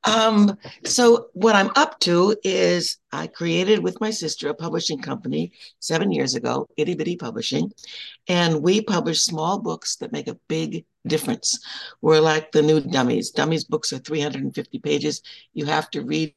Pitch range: 155-205 Hz